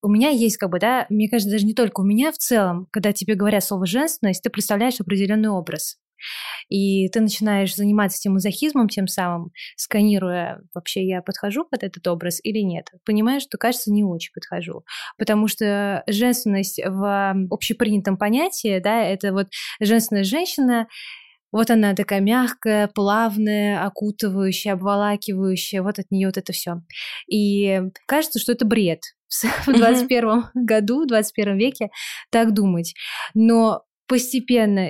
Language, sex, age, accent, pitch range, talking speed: Russian, female, 20-39, native, 195-225 Hz, 150 wpm